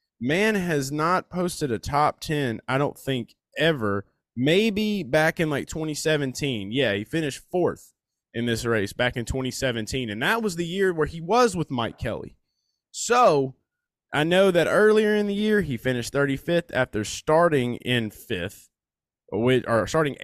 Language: English